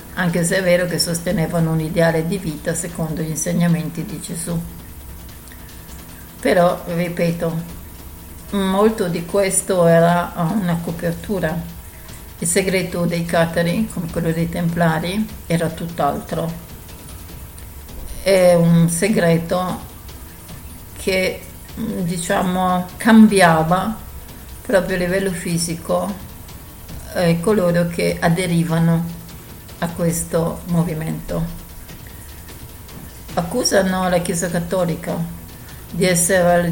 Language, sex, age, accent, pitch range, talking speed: Italian, female, 50-69, native, 160-180 Hz, 90 wpm